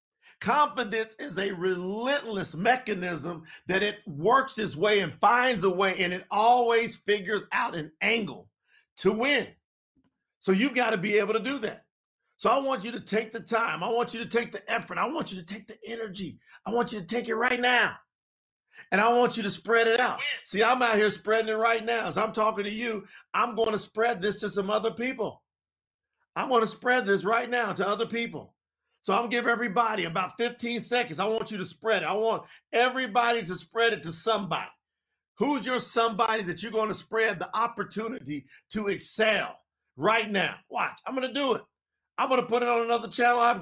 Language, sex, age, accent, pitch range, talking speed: English, male, 50-69, American, 195-235 Hz, 205 wpm